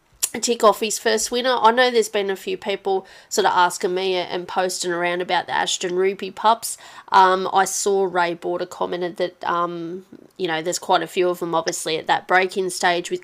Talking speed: 210 wpm